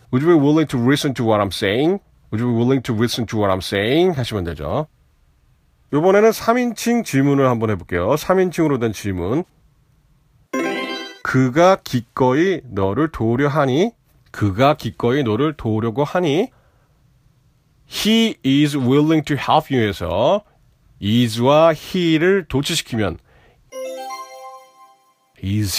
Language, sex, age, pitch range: Korean, male, 40-59, 110-160 Hz